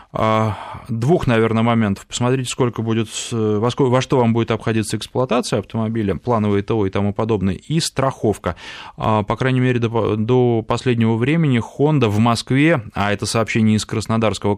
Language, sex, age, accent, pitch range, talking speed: Russian, male, 20-39, native, 105-130 Hz, 140 wpm